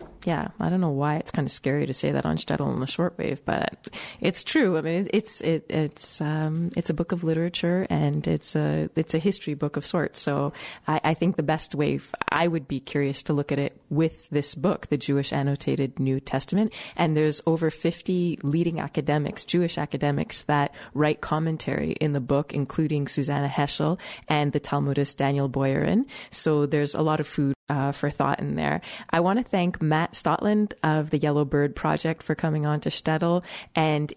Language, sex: English, female